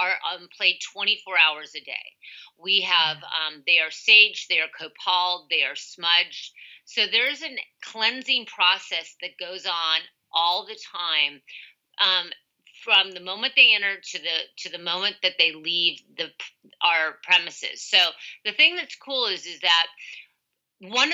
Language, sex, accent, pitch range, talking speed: English, female, American, 170-210 Hz, 160 wpm